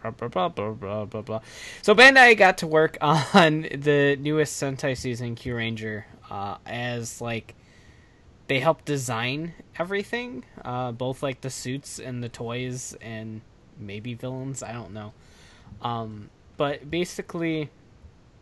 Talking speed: 115 wpm